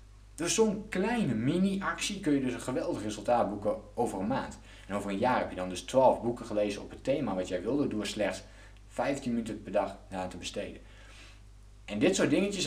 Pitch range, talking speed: 100-125 Hz, 215 wpm